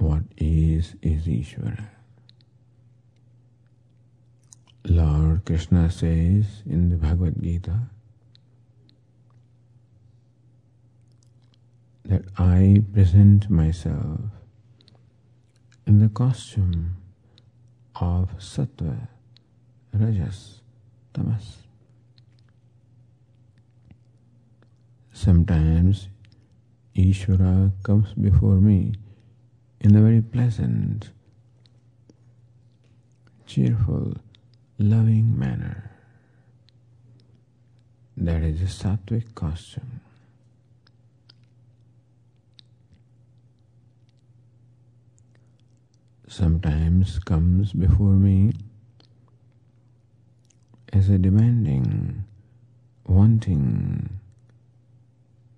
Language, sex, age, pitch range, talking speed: English, male, 50-69, 100-120 Hz, 50 wpm